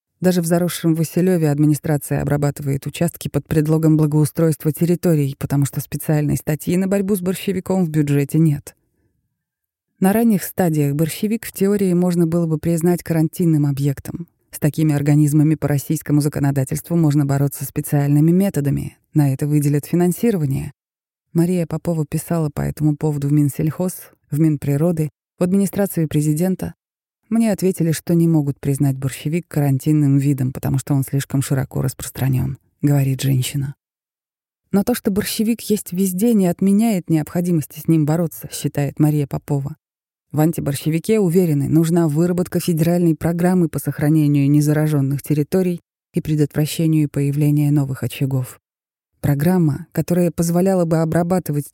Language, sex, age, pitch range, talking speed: Russian, female, 30-49, 145-175 Hz, 130 wpm